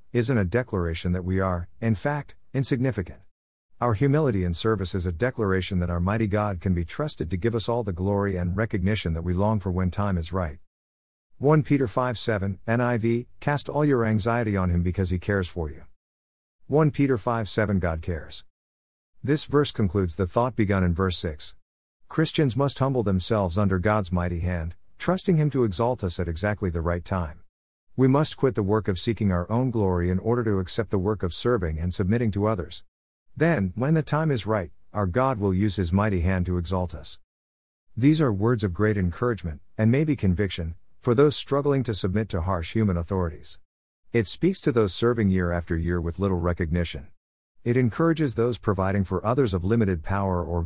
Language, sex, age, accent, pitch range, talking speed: English, male, 50-69, American, 90-120 Hz, 195 wpm